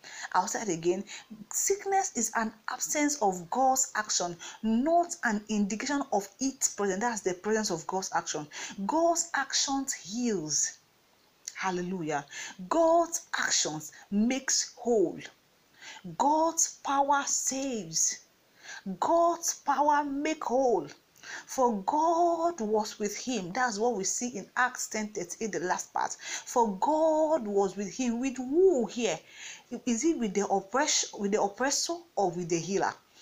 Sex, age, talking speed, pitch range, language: female, 40-59, 130 wpm, 210-300 Hz, English